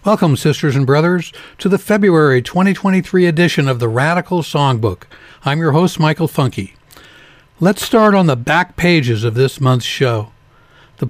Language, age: English, 60-79